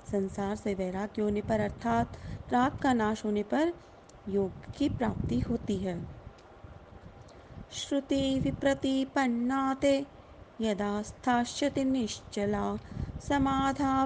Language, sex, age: Hindi, female, 30-49